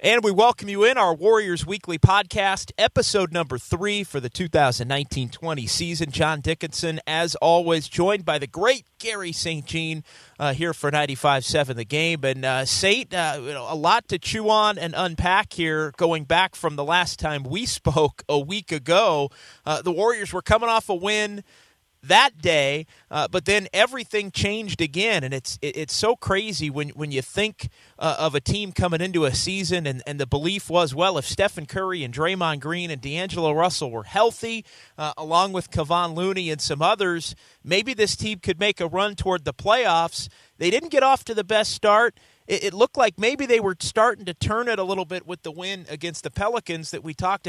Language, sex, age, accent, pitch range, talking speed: English, male, 30-49, American, 150-195 Hz, 195 wpm